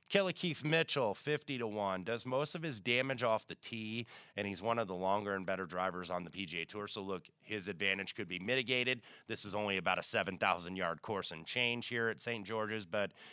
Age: 30-49